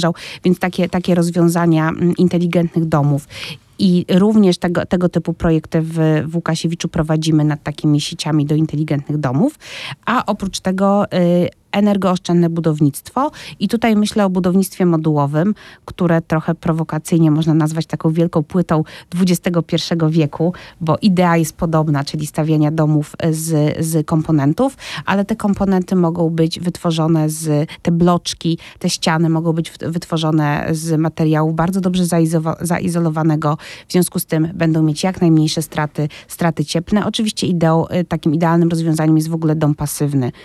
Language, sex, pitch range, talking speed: Polish, female, 155-175 Hz, 135 wpm